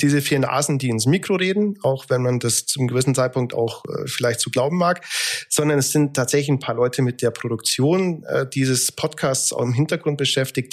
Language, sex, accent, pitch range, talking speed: German, male, German, 120-150 Hz, 220 wpm